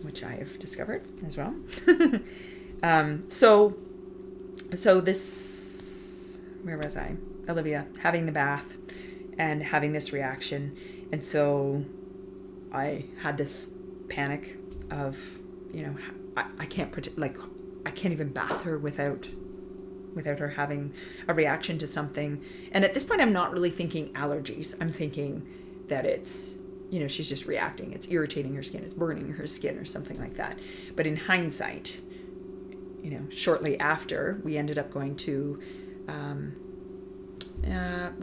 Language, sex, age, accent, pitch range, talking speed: English, female, 30-49, American, 145-185 Hz, 145 wpm